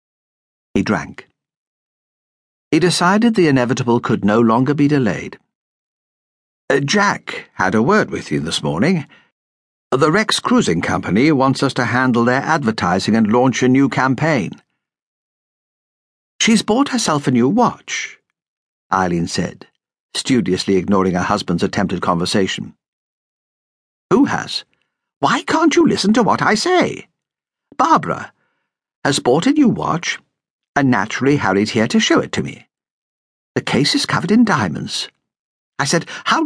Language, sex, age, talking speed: English, male, 60-79, 135 wpm